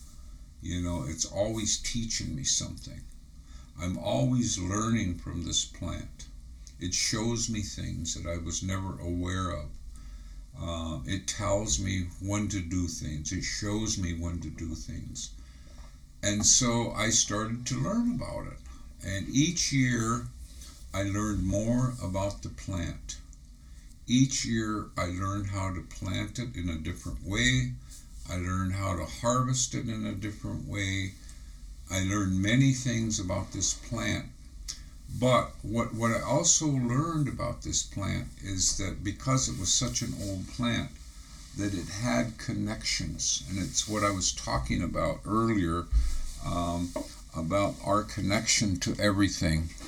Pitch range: 75-110 Hz